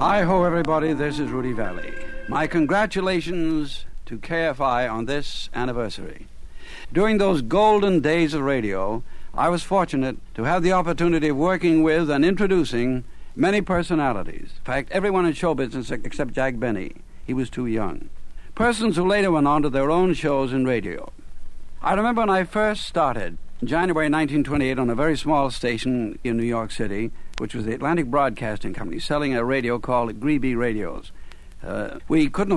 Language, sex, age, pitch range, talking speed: English, male, 60-79, 120-165 Hz, 165 wpm